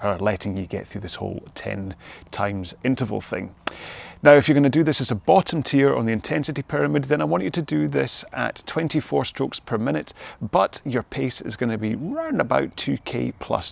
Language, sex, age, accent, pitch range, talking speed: English, male, 30-49, British, 105-135 Hz, 215 wpm